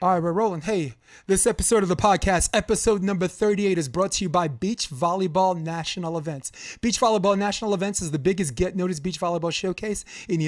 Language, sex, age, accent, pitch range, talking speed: English, male, 30-49, American, 170-220 Hz, 200 wpm